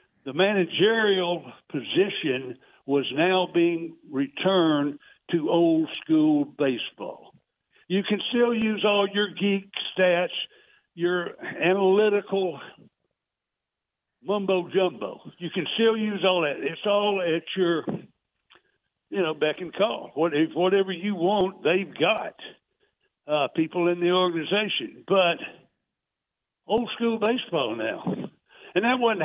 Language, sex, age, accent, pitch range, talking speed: English, male, 60-79, American, 160-200 Hz, 115 wpm